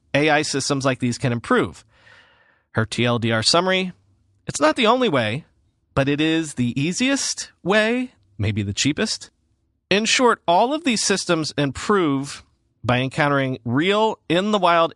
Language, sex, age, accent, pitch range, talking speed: English, male, 40-59, American, 115-175 Hz, 135 wpm